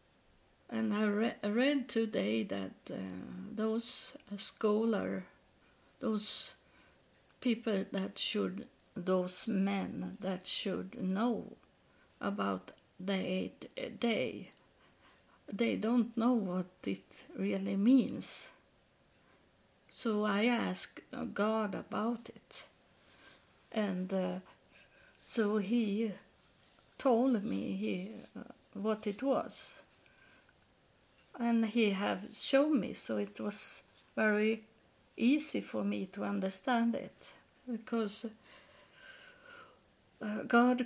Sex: female